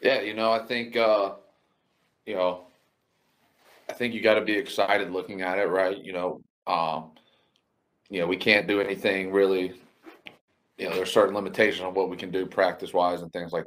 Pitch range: 85-100 Hz